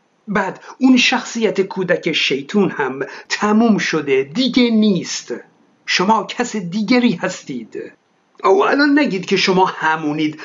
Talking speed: 115 wpm